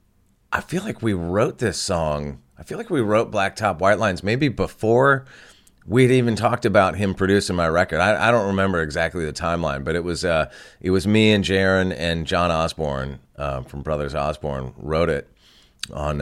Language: English